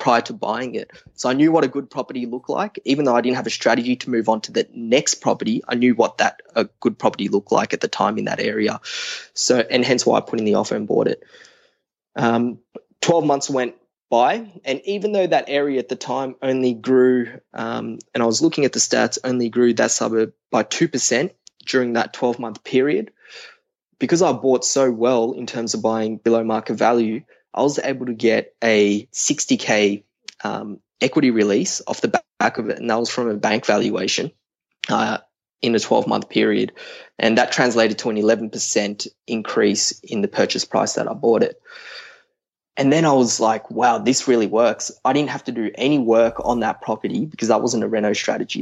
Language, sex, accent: English, male, Australian